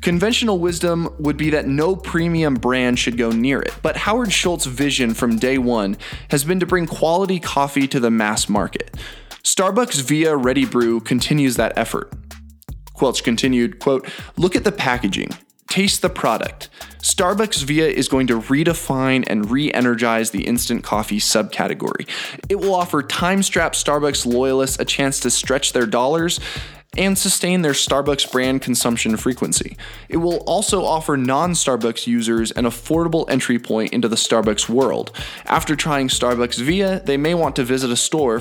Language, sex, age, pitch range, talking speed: English, male, 20-39, 120-165 Hz, 160 wpm